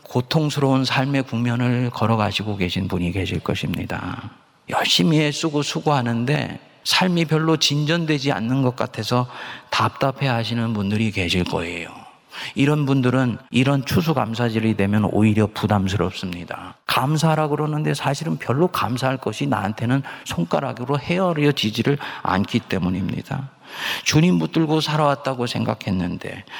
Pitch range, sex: 95-135 Hz, male